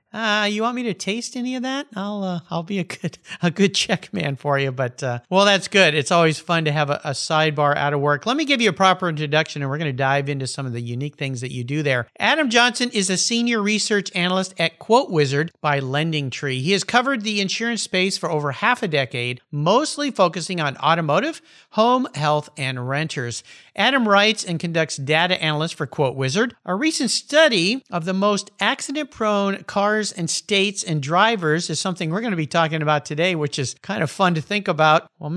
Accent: American